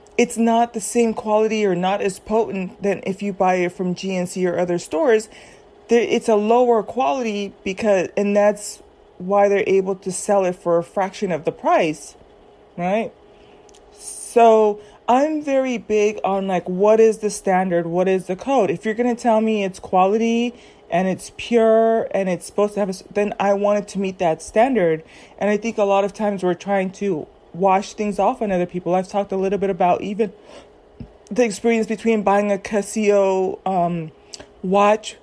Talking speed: 185 wpm